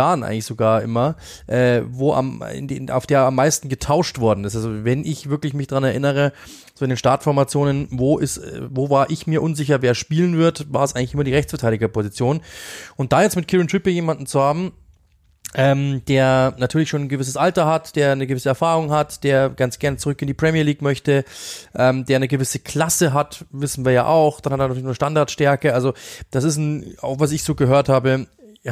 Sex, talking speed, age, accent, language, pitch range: male, 210 wpm, 20-39, German, German, 130-150 Hz